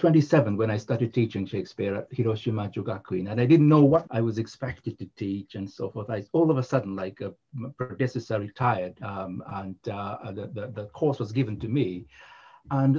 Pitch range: 105-140 Hz